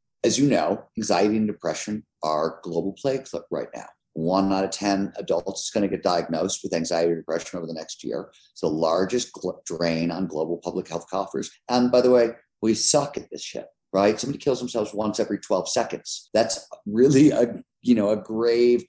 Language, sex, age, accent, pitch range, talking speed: English, male, 50-69, American, 90-125 Hz, 190 wpm